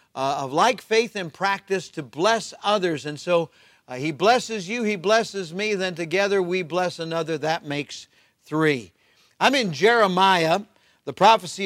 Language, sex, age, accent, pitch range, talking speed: English, male, 50-69, American, 155-205 Hz, 160 wpm